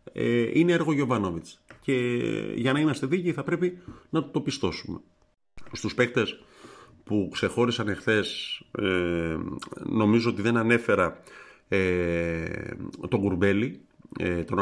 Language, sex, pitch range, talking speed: Greek, male, 95-120 Hz, 100 wpm